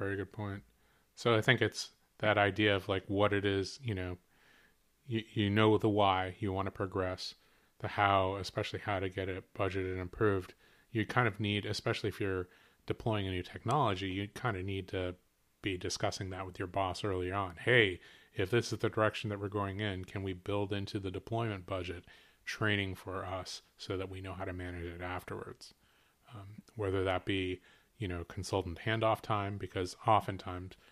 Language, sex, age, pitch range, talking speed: English, male, 30-49, 95-110 Hz, 190 wpm